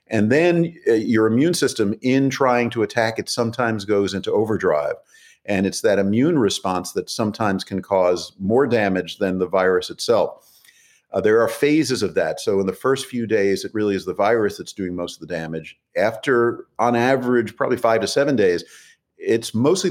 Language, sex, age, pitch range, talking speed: English, male, 50-69, 95-130 Hz, 190 wpm